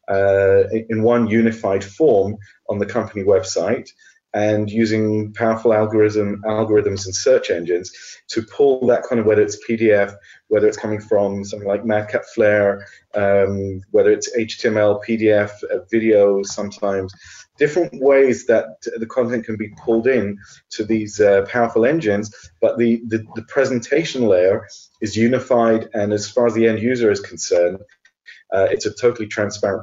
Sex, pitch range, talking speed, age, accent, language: male, 105-125 Hz, 150 wpm, 30-49, British, English